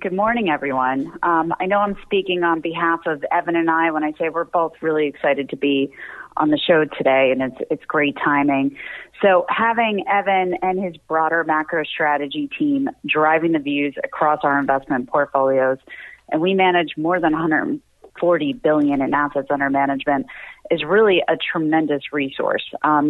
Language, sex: English, female